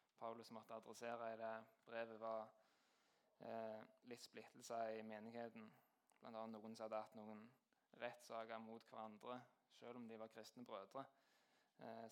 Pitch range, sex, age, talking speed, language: 115-120 Hz, male, 20-39, 140 wpm, English